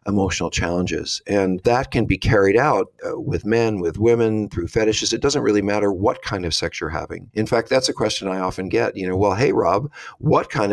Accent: American